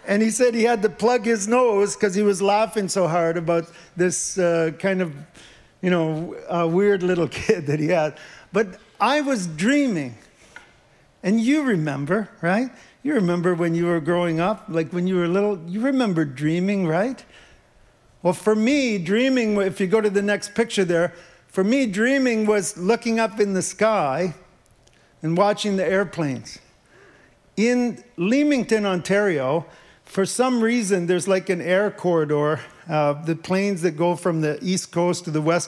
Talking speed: 170 wpm